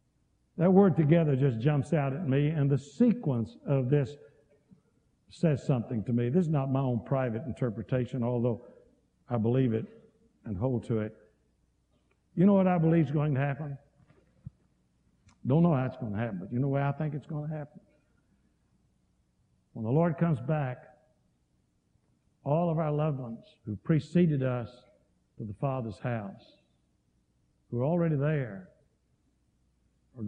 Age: 60-79